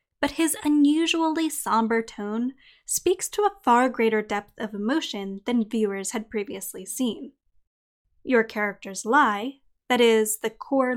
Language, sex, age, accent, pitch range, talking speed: English, female, 10-29, American, 215-270 Hz, 135 wpm